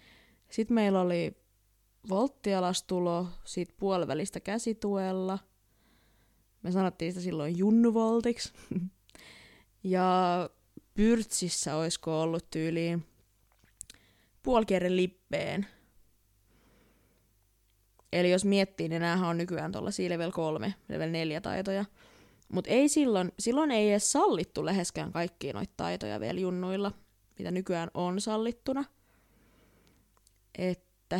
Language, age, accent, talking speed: Finnish, 20-39, native, 95 wpm